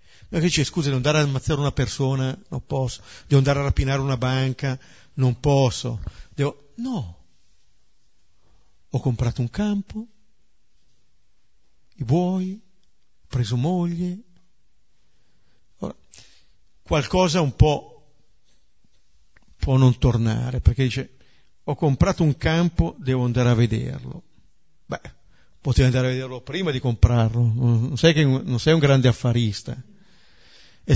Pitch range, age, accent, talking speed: 115-160 Hz, 50-69, native, 125 wpm